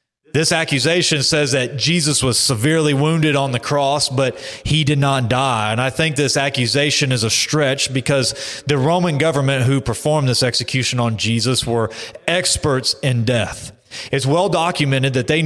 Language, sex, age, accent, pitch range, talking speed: English, male, 30-49, American, 125-155 Hz, 165 wpm